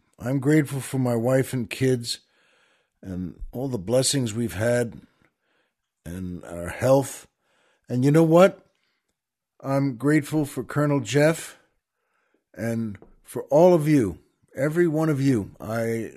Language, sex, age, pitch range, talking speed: English, male, 60-79, 120-165 Hz, 130 wpm